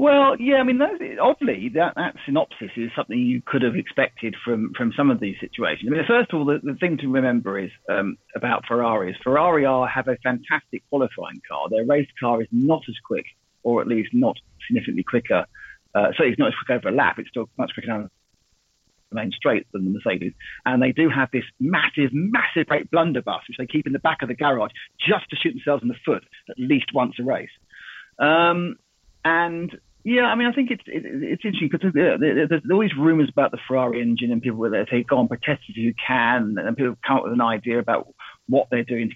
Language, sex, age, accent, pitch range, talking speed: English, male, 40-59, British, 120-195 Hz, 225 wpm